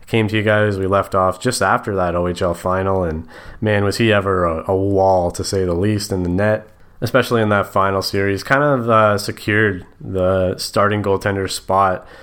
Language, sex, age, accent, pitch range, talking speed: English, male, 20-39, American, 90-110 Hz, 195 wpm